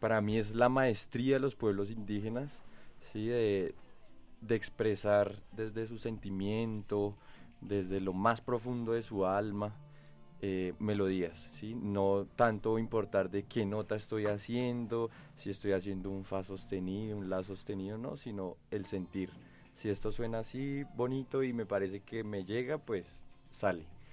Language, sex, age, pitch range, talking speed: Spanish, male, 20-39, 95-115 Hz, 150 wpm